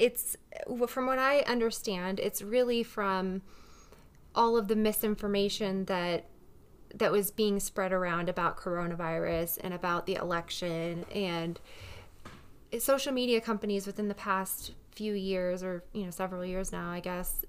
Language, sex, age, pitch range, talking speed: English, female, 20-39, 190-230 Hz, 140 wpm